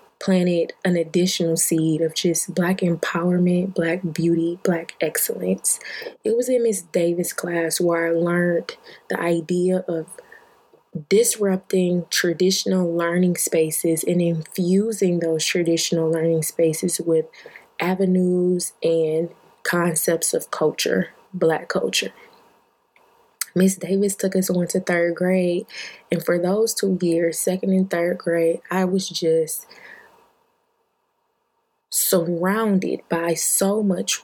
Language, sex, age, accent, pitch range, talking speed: English, female, 20-39, American, 165-200 Hz, 115 wpm